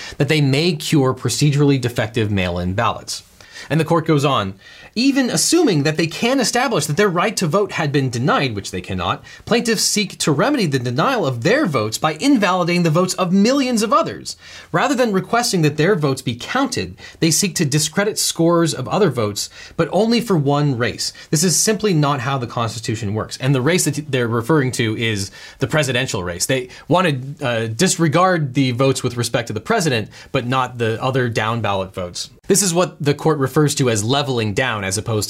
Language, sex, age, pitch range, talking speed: English, male, 30-49, 115-170 Hz, 200 wpm